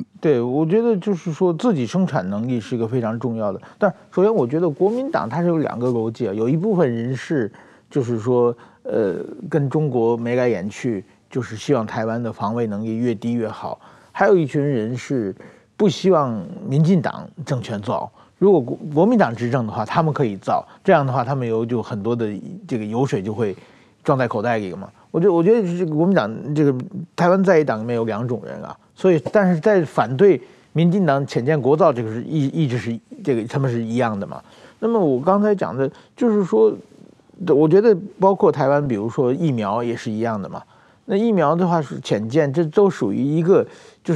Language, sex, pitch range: Chinese, male, 120-180 Hz